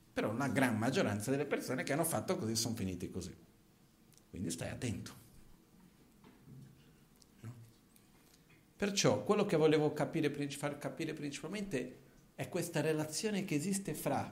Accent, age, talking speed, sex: native, 50-69, 120 wpm, male